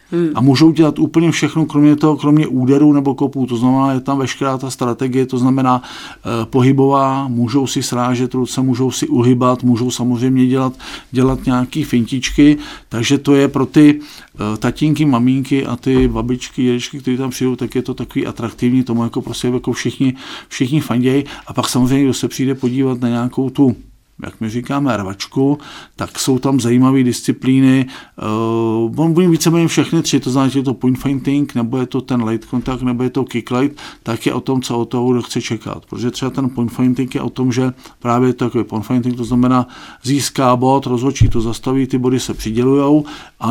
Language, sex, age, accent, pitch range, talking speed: Czech, male, 50-69, native, 120-135 Hz, 190 wpm